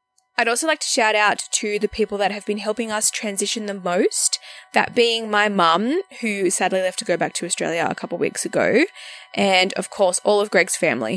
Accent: Australian